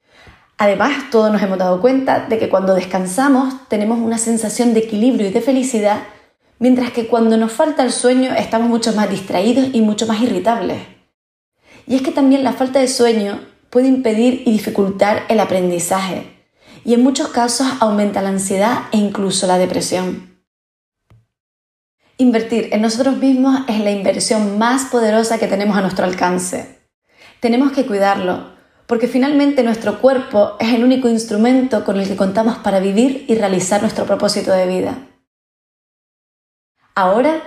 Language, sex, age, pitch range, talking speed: Spanish, female, 30-49, 200-250 Hz, 155 wpm